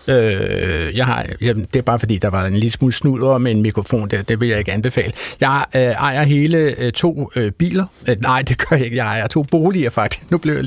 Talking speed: 205 wpm